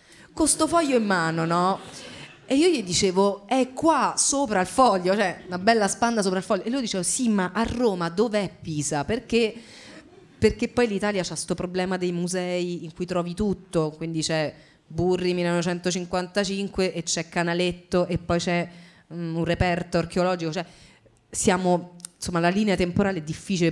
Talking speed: 165 wpm